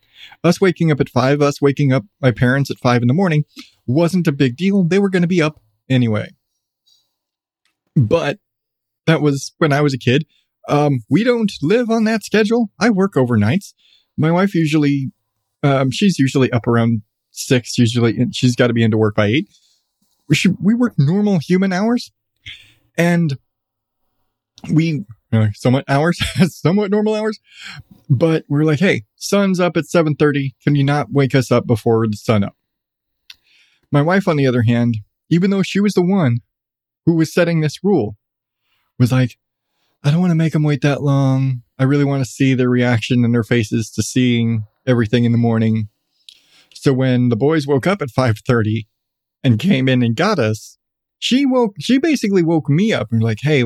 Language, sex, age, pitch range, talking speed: English, male, 20-39, 120-165 Hz, 185 wpm